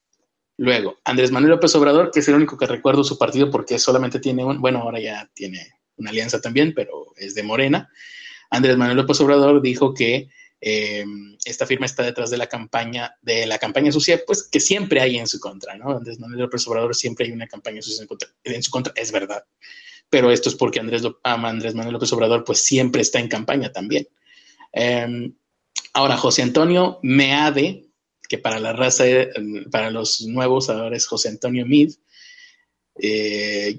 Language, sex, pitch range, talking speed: Spanish, male, 115-145 Hz, 180 wpm